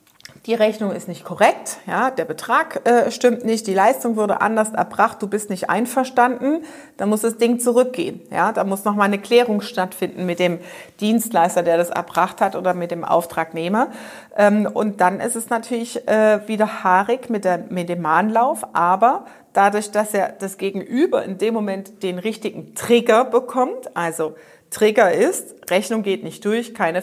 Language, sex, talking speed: German, female, 175 wpm